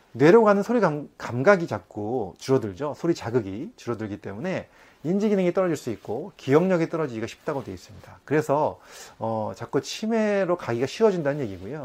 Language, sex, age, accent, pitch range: Korean, male, 30-49, native, 110-180 Hz